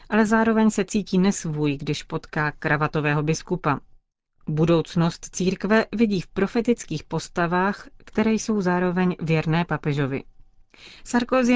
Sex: female